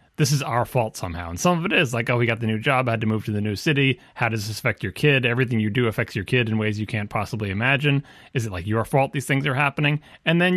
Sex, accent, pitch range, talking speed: male, American, 115-145 Hz, 305 wpm